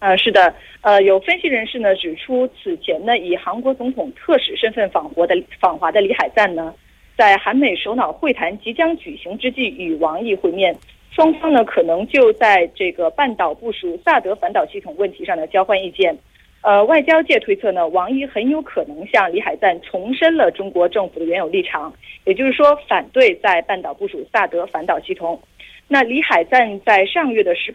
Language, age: Korean, 30-49